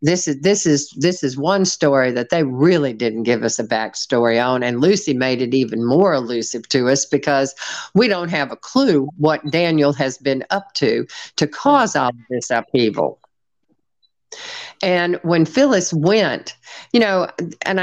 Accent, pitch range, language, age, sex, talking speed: American, 135-180 Hz, English, 50-69, female, 170 wpm